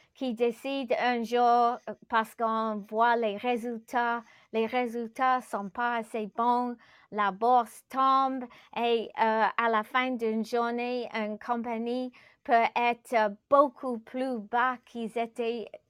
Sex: female